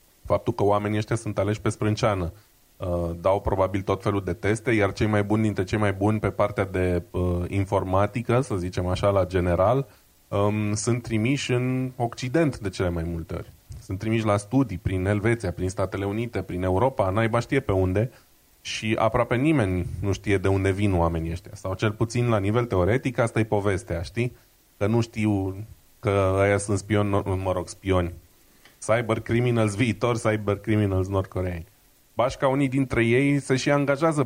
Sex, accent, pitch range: male, native, 95-120 Hz